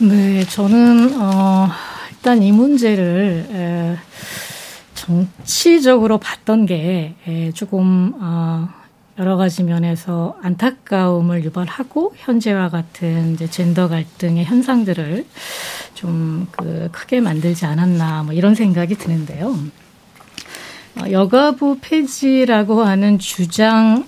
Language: Korean